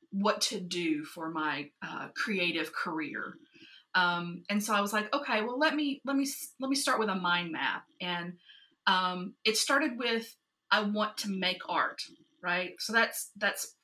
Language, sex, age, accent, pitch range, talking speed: English, female, 30-49, American, 165-230 Hz, 180 wpm